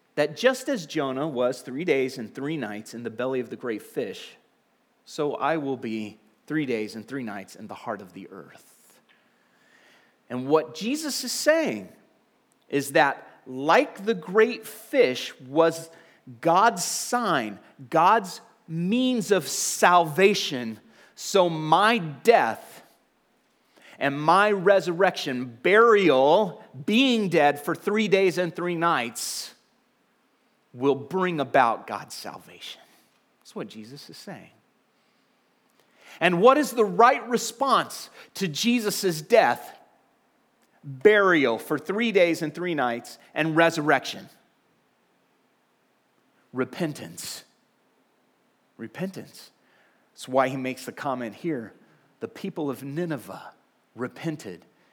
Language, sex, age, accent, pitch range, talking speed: English, male, 30-49, American, 140-200 Hz, 115 wpm